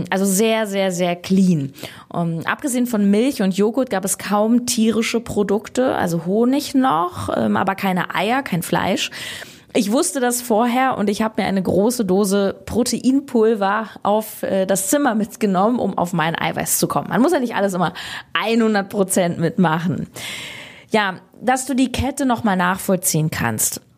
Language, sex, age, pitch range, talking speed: German, female, 20-39, 185-225 Hz, 165 wpm